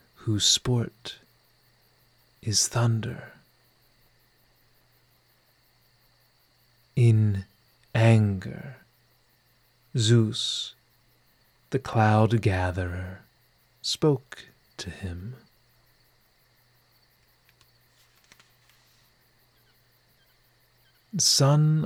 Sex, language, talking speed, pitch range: male, English, 35 wpm, 105-125 Hz